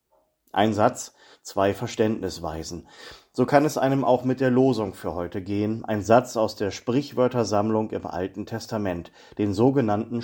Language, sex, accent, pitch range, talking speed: German, male, German, 100-125 Hz, 145 wpm